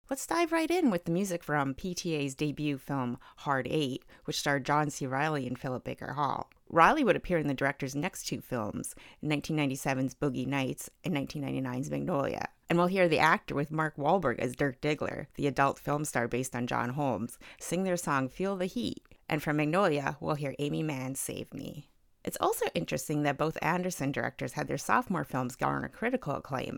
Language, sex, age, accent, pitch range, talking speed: English, female, 30-49, American, 135-170 Hz, 190 wpm